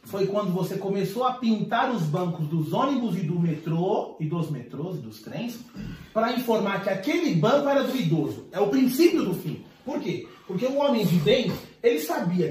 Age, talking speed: 30-49, 200 wpm